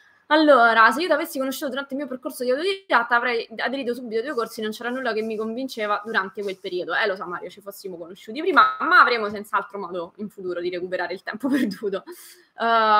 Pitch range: 205-285 Hz